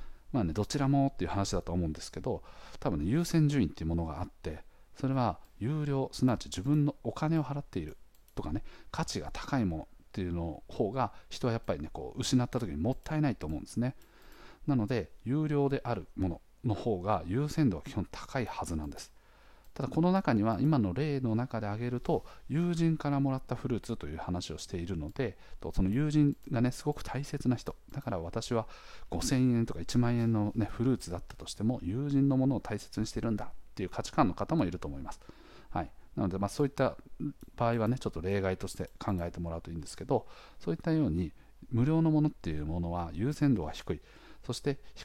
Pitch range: 95-135 Hz